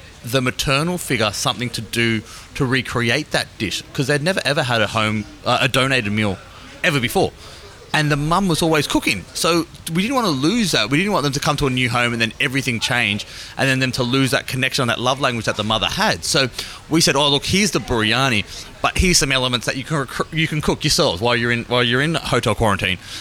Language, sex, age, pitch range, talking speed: English, male, 30-49, 110-145 Hz, 240 wpm